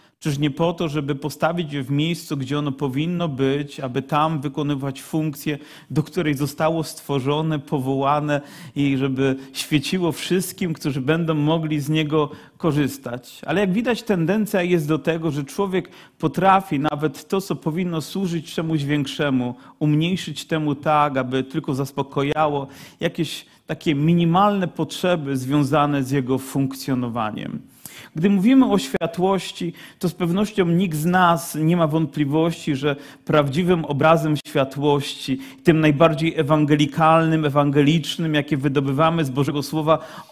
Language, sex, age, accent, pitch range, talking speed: Polish, male, 40-59, native, 145-175 Hz, 130 wpm